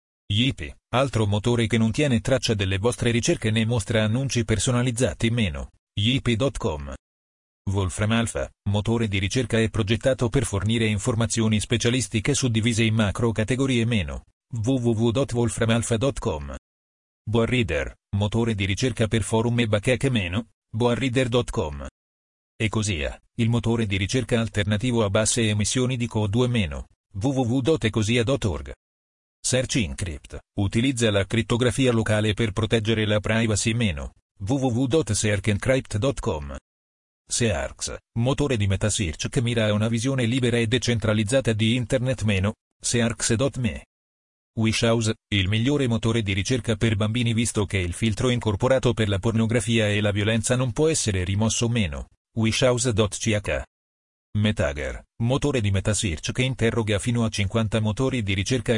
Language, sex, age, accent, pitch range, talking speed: Italian, male, 40-59, native, 100-120 Hz, 125 wpm